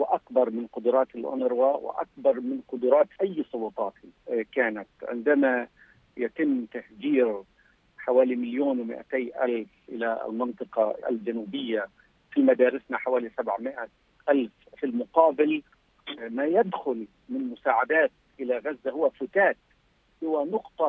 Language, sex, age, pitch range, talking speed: Arabic, male, 50-69, 125-200 Hz, 105 wpm